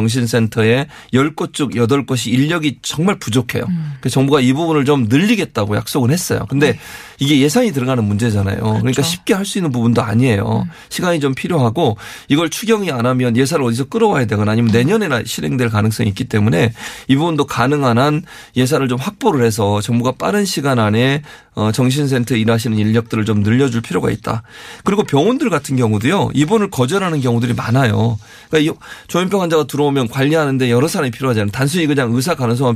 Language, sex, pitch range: Korean, male, 115-150 Hz